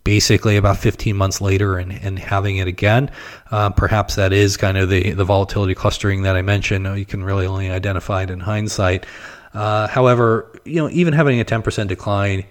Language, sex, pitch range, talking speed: English, male, 95-110 Hz, 195 wpm